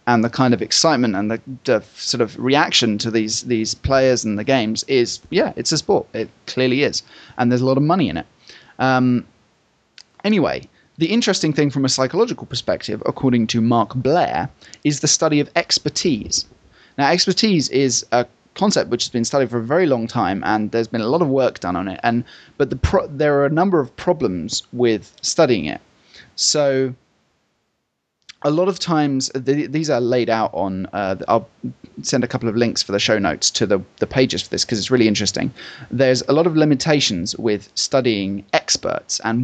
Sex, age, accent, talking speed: male, 30-49, British, 195 wpm